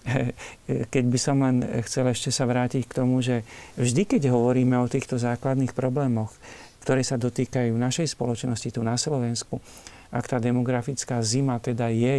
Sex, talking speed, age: male, 165 wpm, 50-69